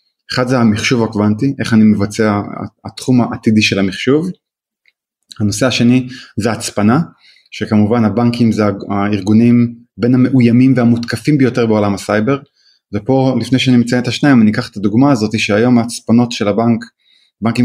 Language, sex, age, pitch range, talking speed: Hebrew, male, 20-39, 105-125 Hz, 140 wpm